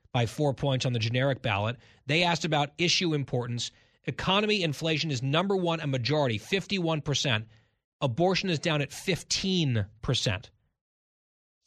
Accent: American